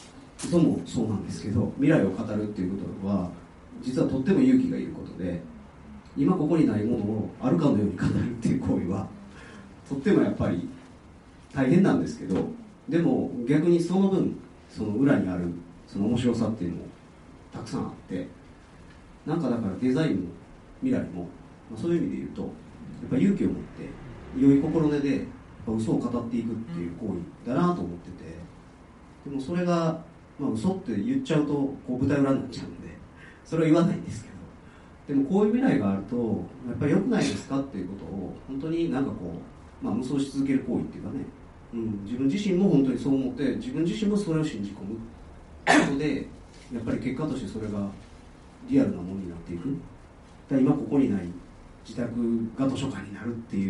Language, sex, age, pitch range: Japanese, male, 40-59, 90-140 Hz